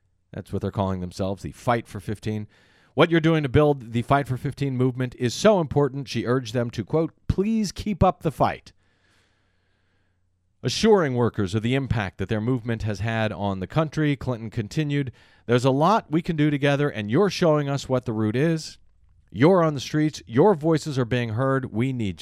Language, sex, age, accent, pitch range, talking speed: English, male, 40-59, American, 95-135 Hz, 195 wpm